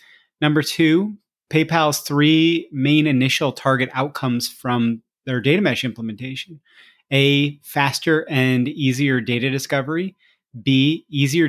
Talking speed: 110 wpm